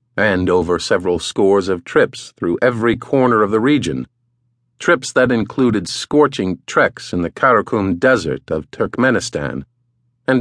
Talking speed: 140 wpm